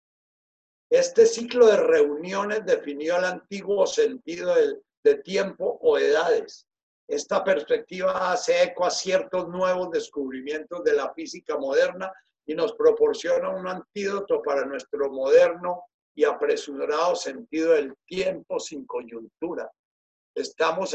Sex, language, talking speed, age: male, Spanish, 115 wpm, 50-69